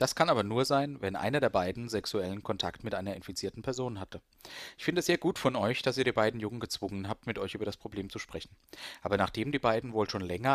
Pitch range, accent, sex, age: 95-125 Hz, German, male, 40-59